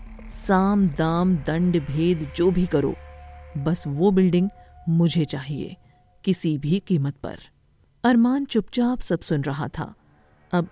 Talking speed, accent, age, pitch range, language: 130 wpm, native, 50-69, 140-185 Hz, Hindi